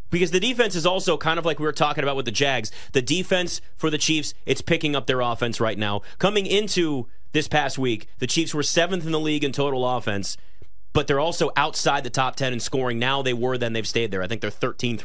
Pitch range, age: 115-155 Hz, 30-49